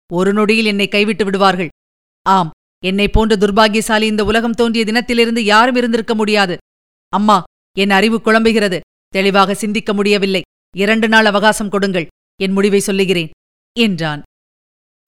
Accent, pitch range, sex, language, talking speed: native, 195-245 Hz, female, Tamil, 125 wpm